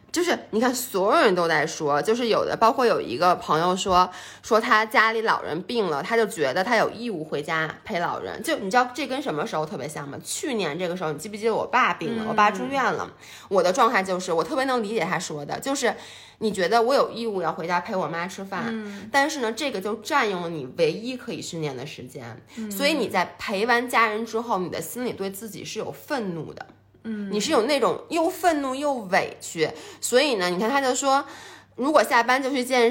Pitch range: 180-250 Hz